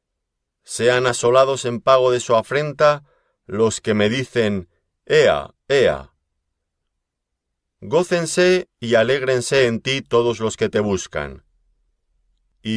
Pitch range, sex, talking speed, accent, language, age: 85-120 Hz, male, 115 wpm, Spanish, Spanish, 40-59